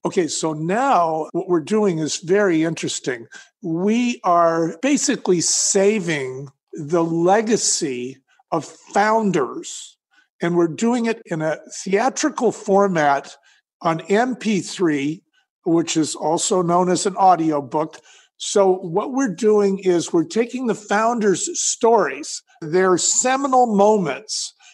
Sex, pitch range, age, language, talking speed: male, 175-230 Hz, 50-69, English, 115 wpm